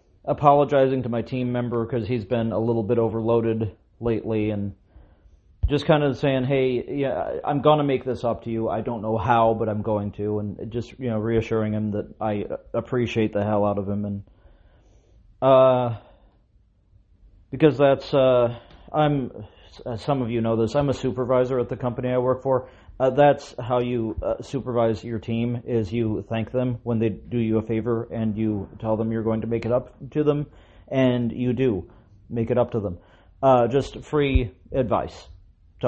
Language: English